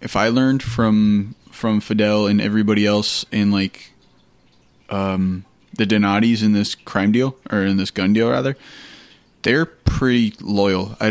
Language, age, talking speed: English, 20-39, 150 wpm